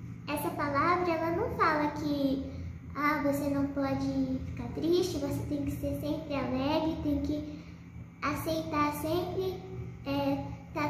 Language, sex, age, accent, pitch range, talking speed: Portuguese, male, 10-29, Brazilian, 270-315 Hz, 120 wpm